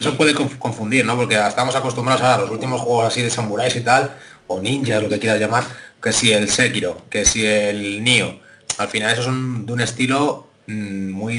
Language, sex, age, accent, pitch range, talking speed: Spanish, male, 30-49, Spanish, 105-130 Hz, 205 wpm